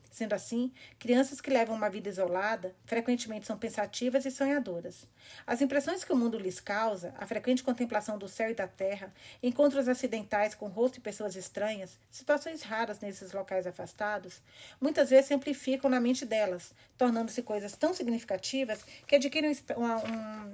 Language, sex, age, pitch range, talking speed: Portuguese, female, 40-59, 205-250 Hz, 160 wpm